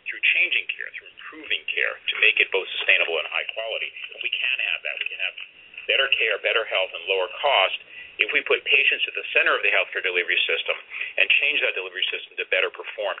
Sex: male